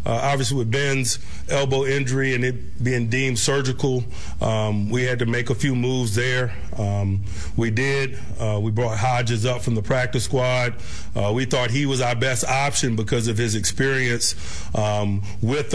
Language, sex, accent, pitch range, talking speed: English, male, American, 115-135 Hz, 175 wpm